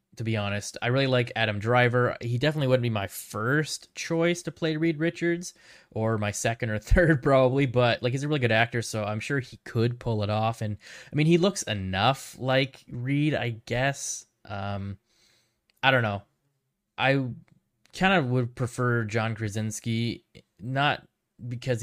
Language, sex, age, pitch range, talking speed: English, male, 20-39, 105-125 Hz, 175 wpm